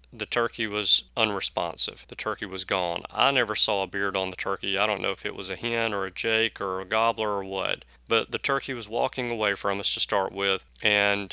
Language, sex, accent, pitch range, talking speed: English, male, American, 95-115 Hz, 235 wpm